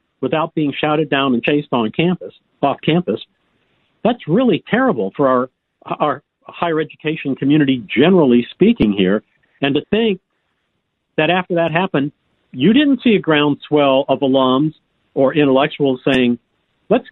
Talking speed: 140 wpm